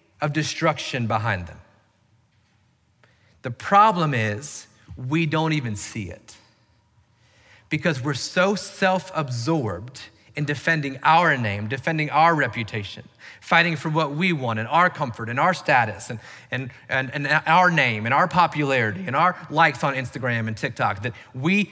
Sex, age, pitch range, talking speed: male, 40-59, 110-165 Hz, 140 wpm